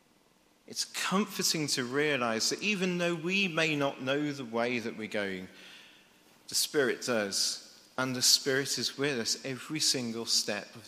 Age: 40-59